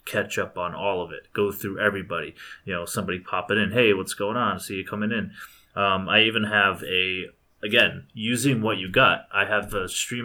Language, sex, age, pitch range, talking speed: English, male, 20-39, 95-105 Hz, 215 wpm